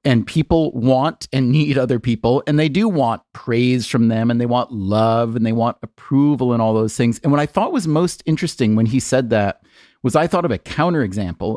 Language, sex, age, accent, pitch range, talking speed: English, male, 40-59, American, 115-150 Hz, 225 wpm